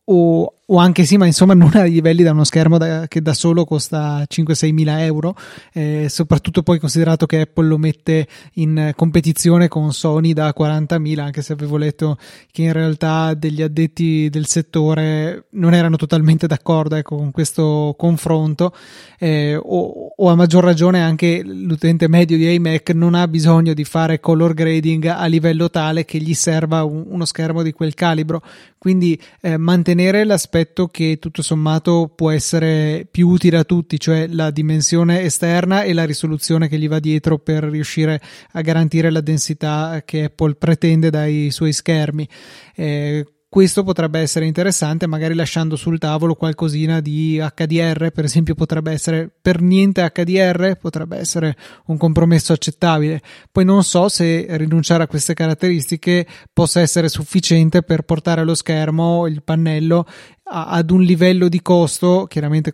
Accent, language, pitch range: native, Italian, 155-170 Hz